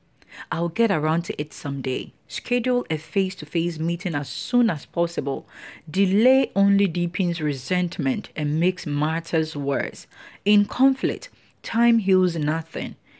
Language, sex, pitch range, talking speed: English, female, 155-200 Hz, 125 wpm